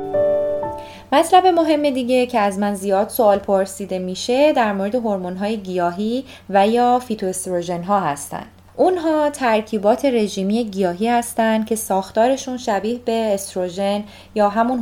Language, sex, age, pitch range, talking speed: Persian, female, 20-39, 185-240 Hz, 130 wpm